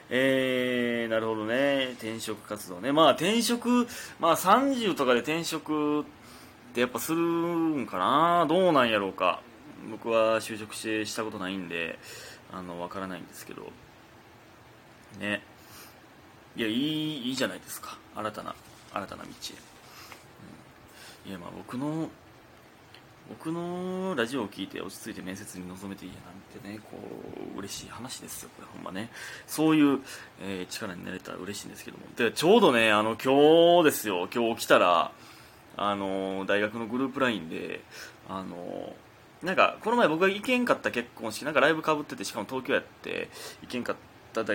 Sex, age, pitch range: male, 20-39, 105-160 Hz